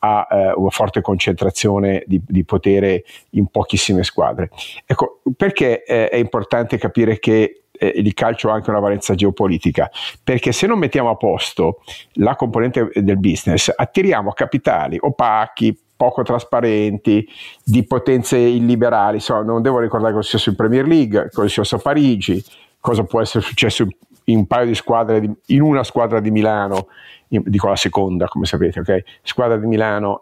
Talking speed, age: 160 wpm, 50-69